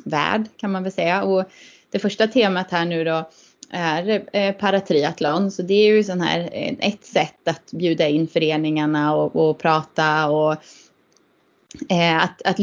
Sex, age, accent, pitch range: female, 20-39, native, 165-205 Hz